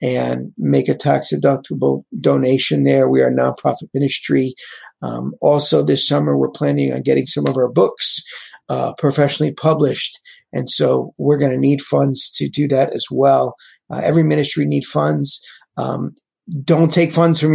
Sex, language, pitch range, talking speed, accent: male, English, 130-160 Hz, 165 wpm, American